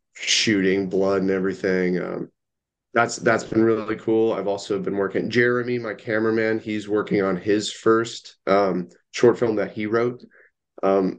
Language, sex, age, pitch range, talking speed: English, male, 30-49, 95-110 Hz, 160 wpm